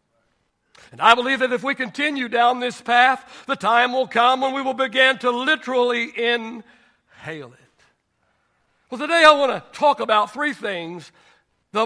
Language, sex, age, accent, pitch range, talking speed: English, male, 60-79, American, 210-265 Hz, 160 wpm